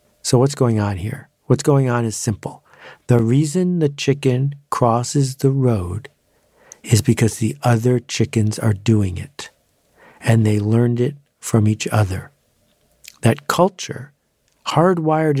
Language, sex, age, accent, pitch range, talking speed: English, male, 50-69, American, 110-140 Hz, 135 wpm